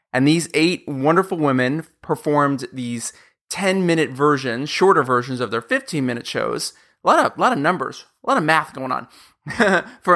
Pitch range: 125-155 Hz